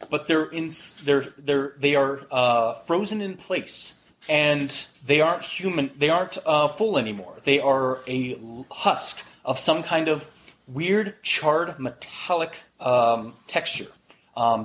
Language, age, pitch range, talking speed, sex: English, 20-39, 130-170 Hz, 140 wpm, male